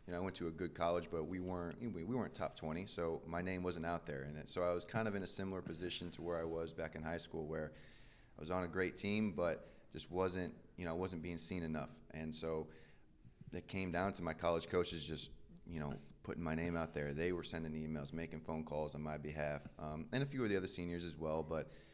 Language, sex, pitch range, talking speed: English, male, 80-90 Hz, 265 wpm